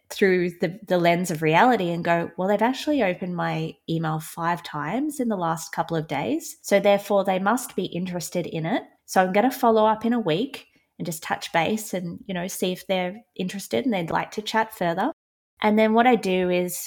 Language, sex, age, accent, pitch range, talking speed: English, female, 20-39, Australian, 175-225 Hz, 220 wpm